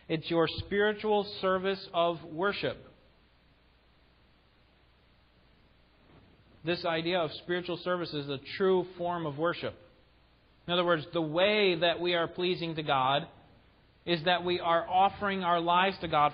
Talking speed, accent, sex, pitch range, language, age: 135 wpm, American, male, 120-175 Hz, English, 40-59